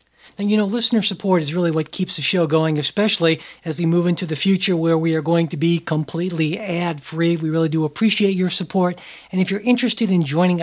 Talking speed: 220 wpm